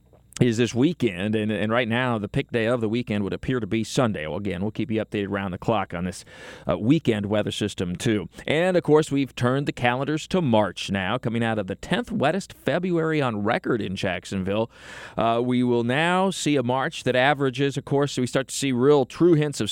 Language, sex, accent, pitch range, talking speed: English, male, American, 110-135 Hz, 225 wpm